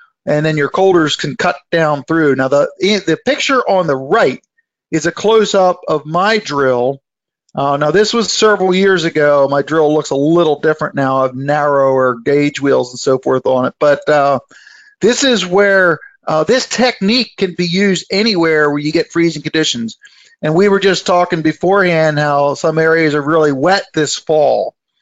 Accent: American